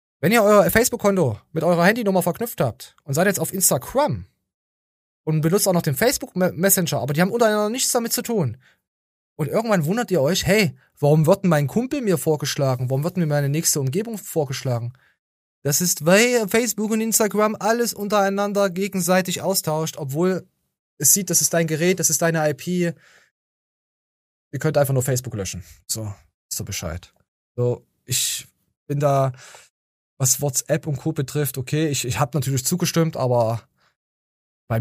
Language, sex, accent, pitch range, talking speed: German, male, German, 120-175 Hz, 165 wpm